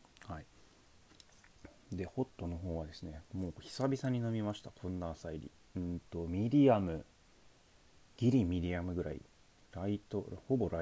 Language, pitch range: Japanese, 80-110 Hz